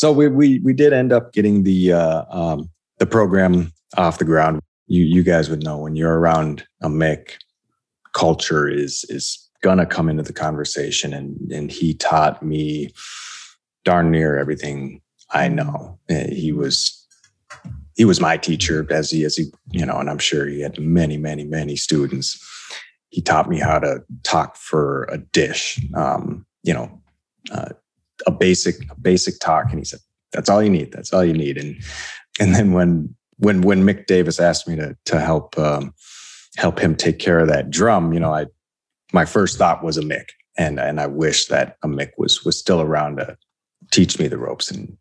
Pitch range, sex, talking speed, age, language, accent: 75-90 Hz, male, 190 wpm, 30-49, English, American